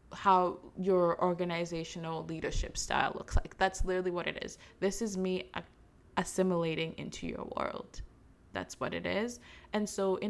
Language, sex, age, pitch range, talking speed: English, female, 20-39, 170-200 Hz, 150 wpm